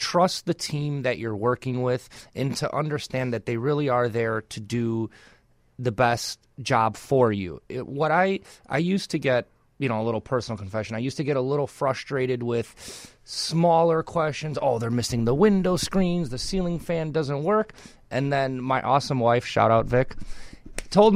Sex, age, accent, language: male, 30-49, American, English